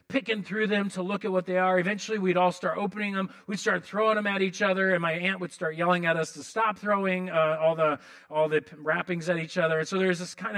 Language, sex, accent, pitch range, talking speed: English, male, American, 175-215 Hz, 265 wpm